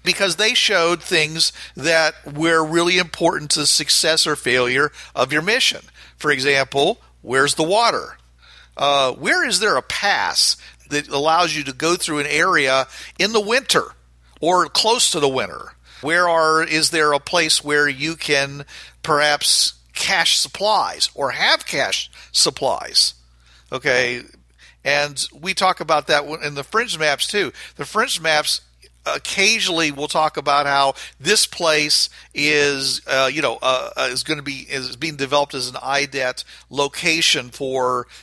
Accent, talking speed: American, 150 wpm